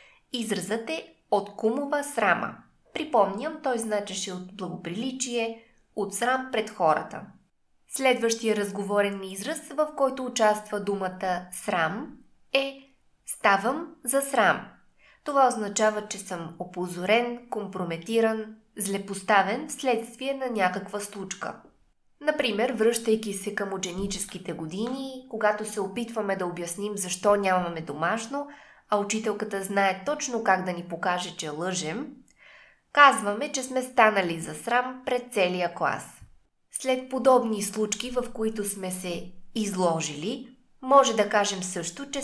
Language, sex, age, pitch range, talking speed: Bulgarian, female, 20-39, 190-250 Hz, 120 wpm